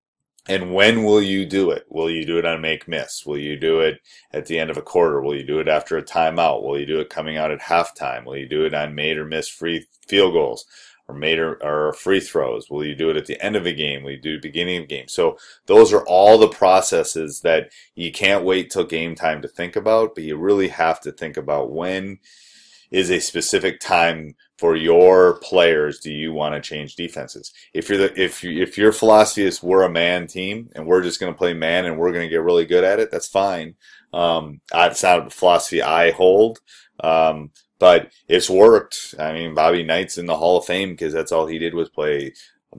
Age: 30-49